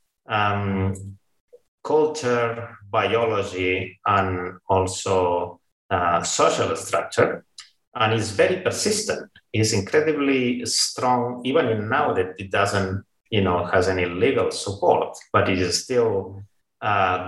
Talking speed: 110 wpm